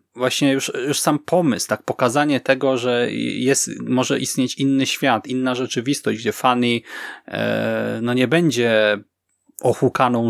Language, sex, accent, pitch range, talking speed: Polish, male, native, 125-160 Hz, 135 wpm